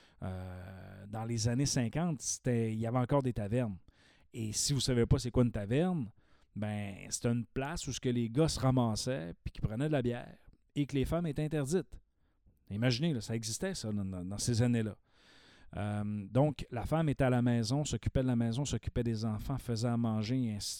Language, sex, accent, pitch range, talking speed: French, male, Canadian, 105-135 Hz, 210 wpm